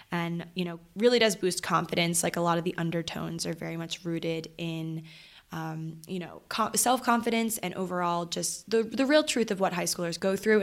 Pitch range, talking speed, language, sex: 170-220 Hz, 200 wpm, English, female